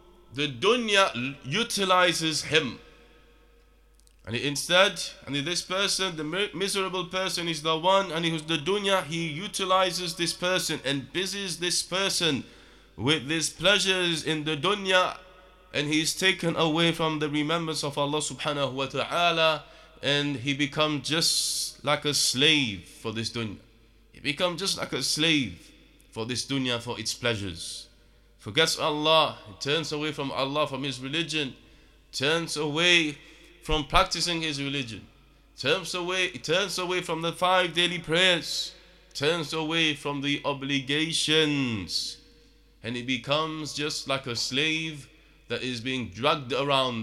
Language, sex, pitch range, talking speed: English, male, 135-170 Hz, 140 wpm